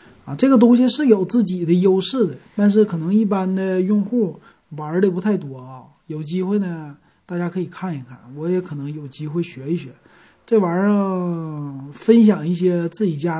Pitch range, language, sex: 160-210 Hz, Chinese, male